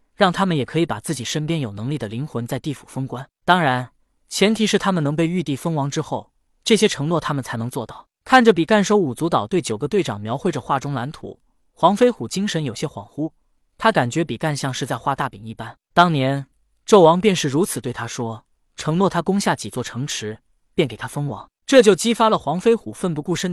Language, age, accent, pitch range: Chinese, 20-39, native, 130-195 Hz